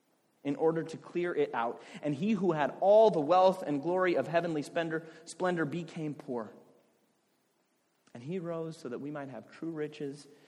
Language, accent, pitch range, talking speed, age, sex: English, American, 120-155 Hz, 170 wpm, 30-49, male